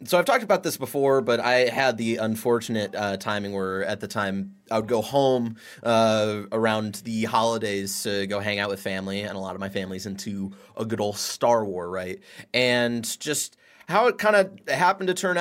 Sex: male